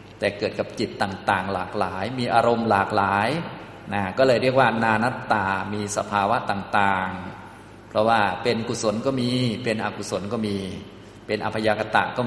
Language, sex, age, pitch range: Thai, male, 20-39, 100-120 Hz